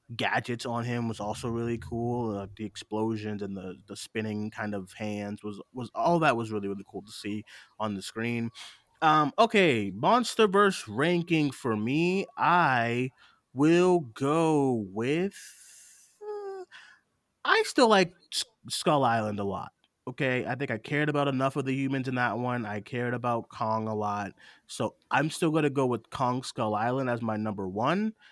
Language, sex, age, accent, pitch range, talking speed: English, male, 30-49, American, 110-150 Hz, 175 wpm